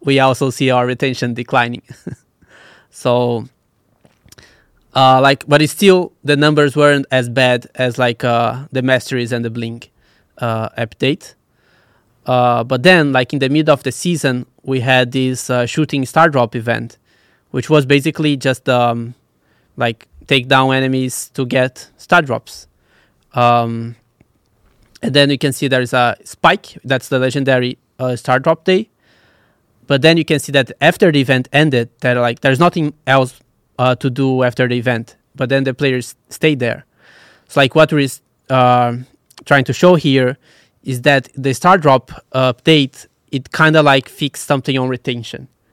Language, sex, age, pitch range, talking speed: English, male, 20-39, 125-145 Hz, 165 wpm